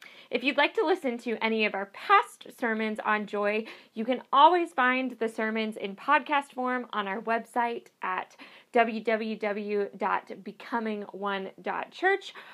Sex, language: female, English